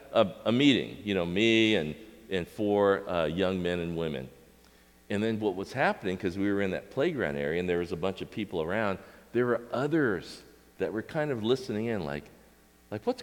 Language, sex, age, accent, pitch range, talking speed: English, male, 50-69, American, 65-100 Hz, 210 wpm